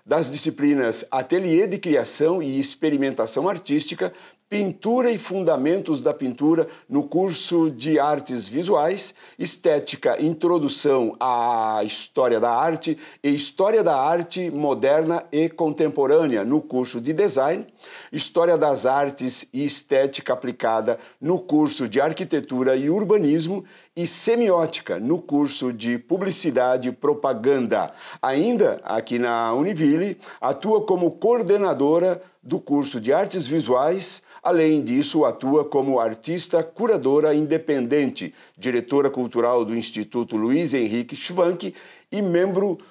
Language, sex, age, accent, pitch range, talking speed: Portuguese, male, 60-79, Brazilian, 135-175 Hz, 115 wpm